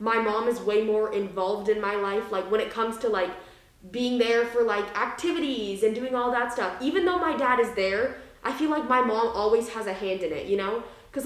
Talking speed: 240 wpm